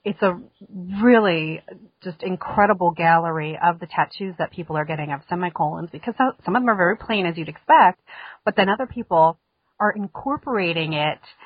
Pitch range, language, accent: 155-185 Hz, English, American